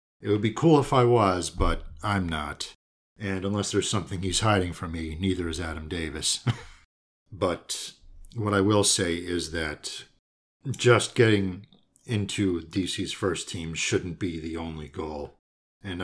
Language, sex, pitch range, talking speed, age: English, male, 85-115 Hz, 155 wpm, 50-69